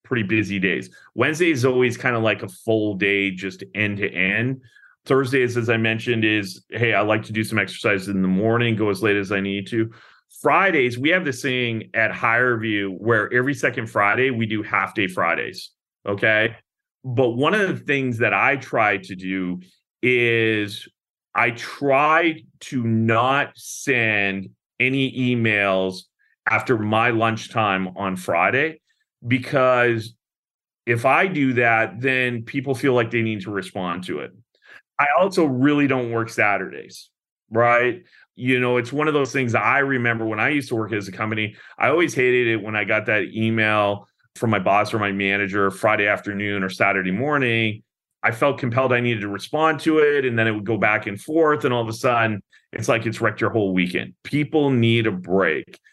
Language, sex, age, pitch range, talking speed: English, male, 30-49, 105-130 Hz, 185 wpm